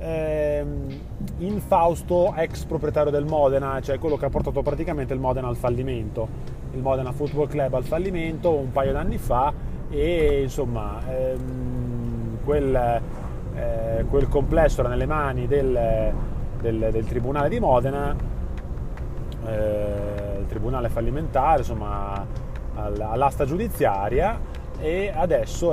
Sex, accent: male, native